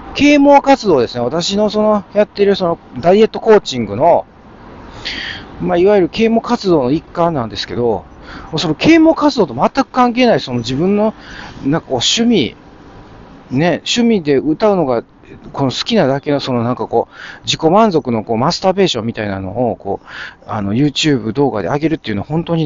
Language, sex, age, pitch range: Japanese, male, 40-59, 110-185 Hz